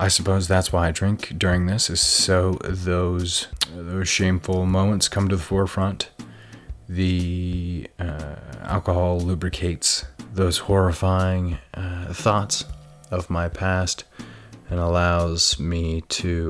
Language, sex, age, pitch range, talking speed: English, male, 30-49, 80-95 Hz, 120 wpm